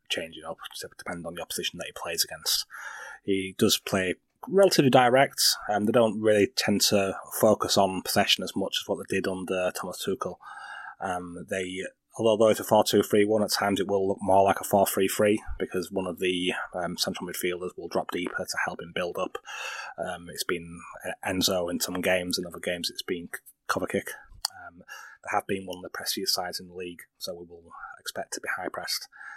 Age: 20-39